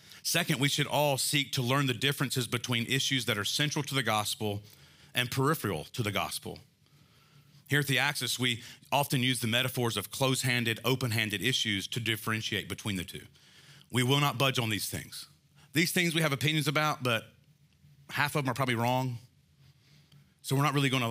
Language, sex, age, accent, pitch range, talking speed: English, male, 40-59, American, 115-145 Hz, 185 wpm